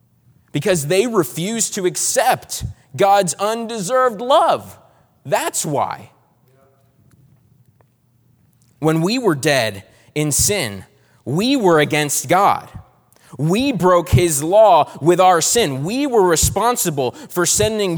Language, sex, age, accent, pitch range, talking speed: English, male, 30-49, American, 150-225 Hz, 105 wpm